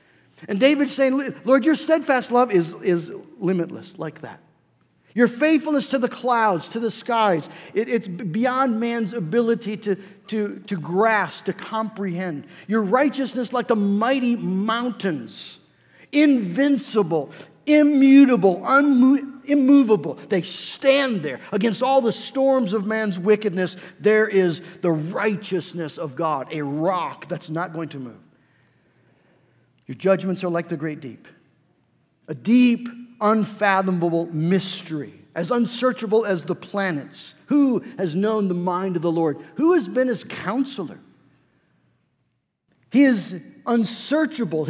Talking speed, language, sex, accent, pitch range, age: 125 wpm, English, male, American, 165-245 Hz, 50-69